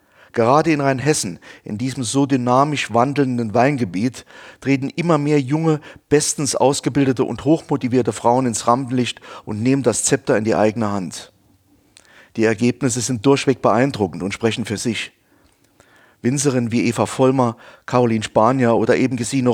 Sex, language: male, German